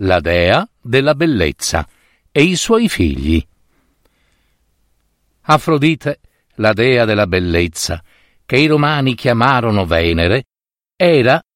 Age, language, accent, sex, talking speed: 50-69, Italian, native, male, 100 wpm